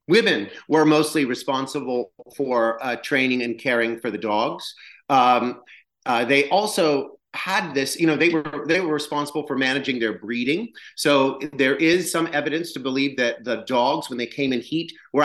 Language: English